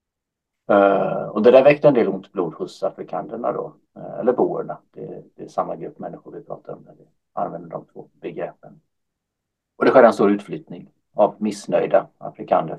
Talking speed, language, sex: 180 wpm, Swedish, male